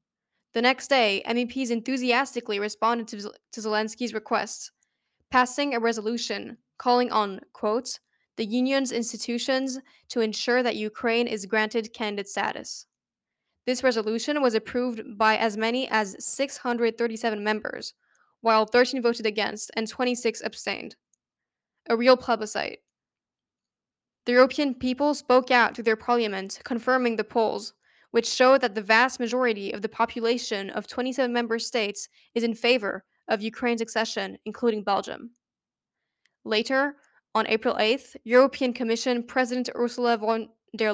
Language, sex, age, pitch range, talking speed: English, female, 10-29, 220-250 Hz, 130 wpm